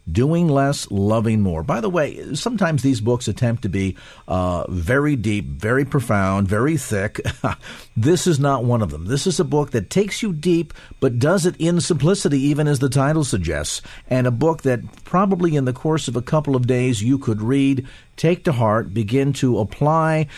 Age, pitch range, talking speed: 50-69, 100-140 Hz, 195 wpm